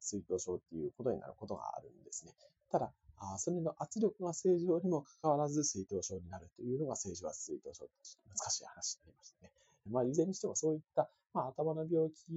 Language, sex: Japanese, male